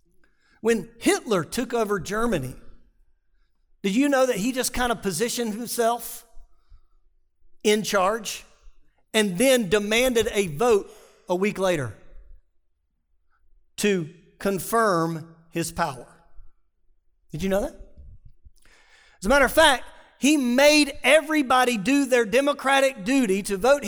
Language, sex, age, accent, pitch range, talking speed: English, male, 40-59, American, 165-260 Hz, 120 wpm